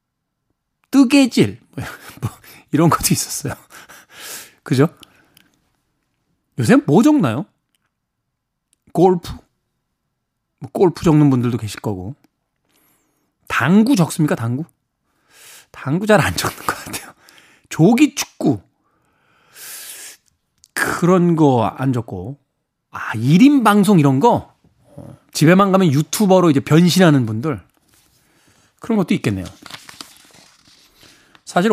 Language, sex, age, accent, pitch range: Korean, male, 40-59, native, 130-195 Hz